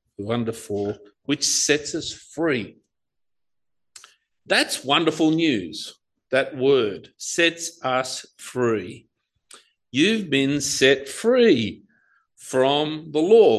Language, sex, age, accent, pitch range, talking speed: English, male, 50-69, Australian, 130-200 Hz, 90 wpm